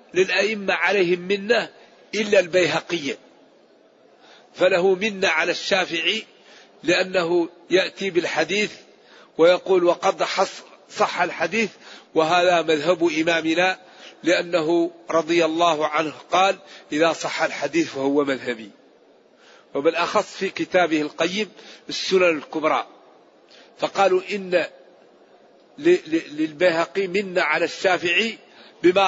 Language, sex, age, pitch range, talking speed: Arabic, male, 50-69, 170-205 Hz, 85 wpm